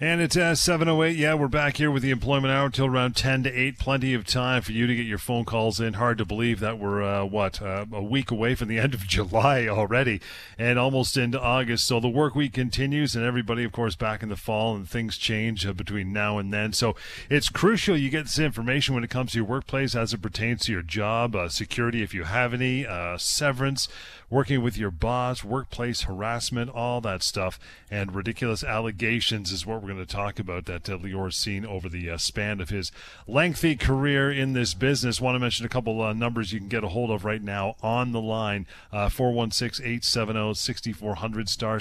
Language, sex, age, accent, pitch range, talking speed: English, male, 40-59, American, 100-125 Hz, 220 wpm